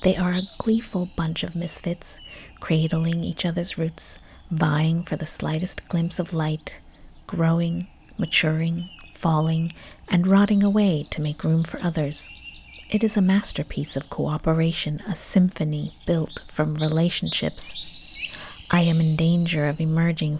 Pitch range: 160-185 Hz